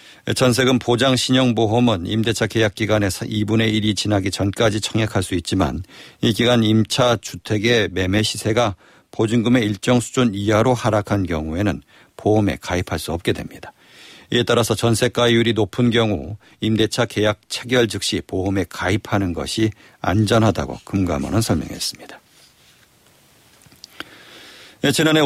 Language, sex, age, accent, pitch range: Korean, male, 50-69, native, 100-125 Hz